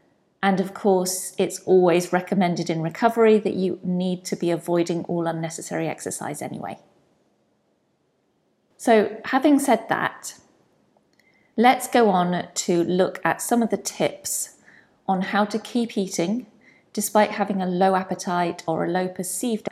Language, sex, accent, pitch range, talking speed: English, female, British, 180-220 Hz, 140 wpm